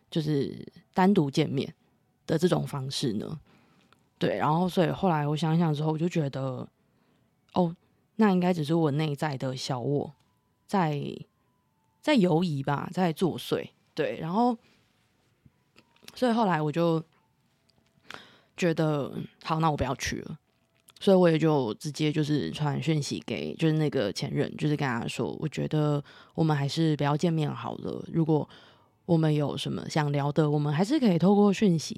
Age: 20-39